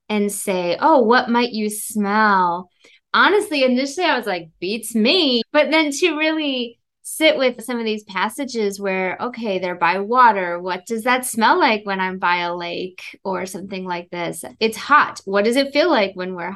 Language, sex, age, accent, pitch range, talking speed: English, female, 20-39, American, 195-245 Hz, 190 wpm